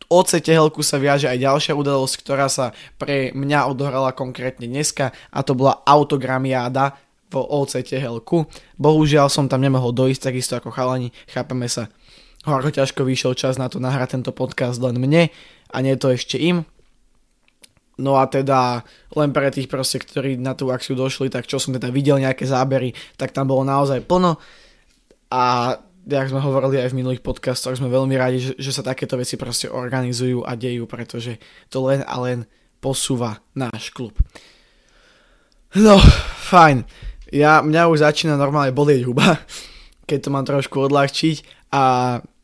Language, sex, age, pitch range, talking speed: Slovak, male, 20-39, 130-140 Hz, 160 wpm